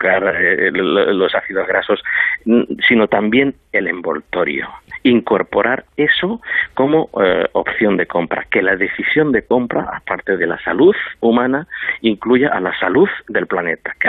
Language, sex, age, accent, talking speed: Spanish, male, 50-69, Spanish, 130 wpm